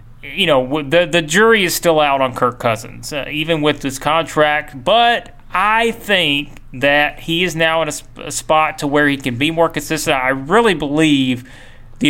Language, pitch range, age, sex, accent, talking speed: English, 130-160 Hz, 30-49, male, American, 190 wpm